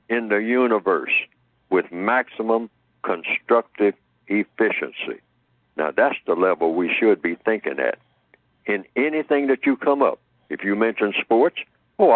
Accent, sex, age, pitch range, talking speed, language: American, male, 60-79, 100-130 Hz, 135 wpm, English